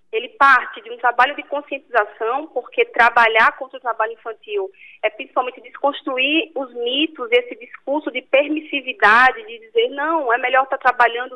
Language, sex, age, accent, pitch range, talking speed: Portuguese, female, 20-39, Brazilian, 240-305 Hz, 155 wpm